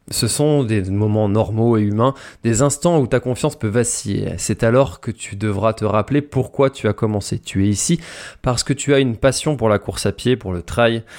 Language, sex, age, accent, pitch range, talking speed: French, male, 20-39, French, 105-140 Hz, 225 wpm